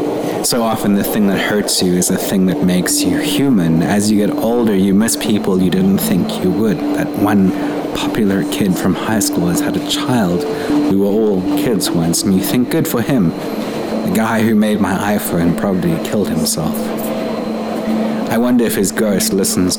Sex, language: male, English